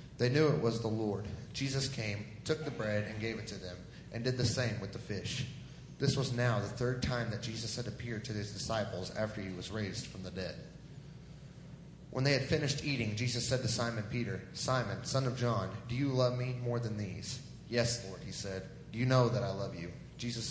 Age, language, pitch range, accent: 30-49, English, 110-130 Hz, American